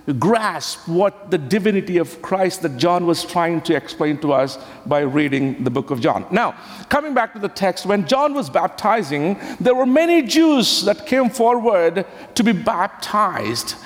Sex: male